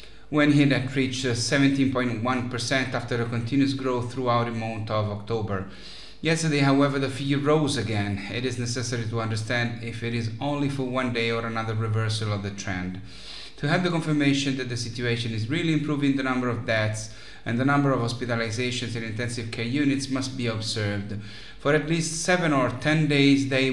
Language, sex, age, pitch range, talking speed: English, male, 30-49, 115-140 Hz, 180 wpm